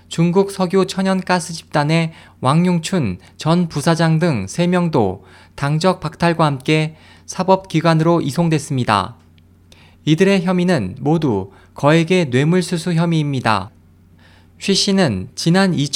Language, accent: Korean, native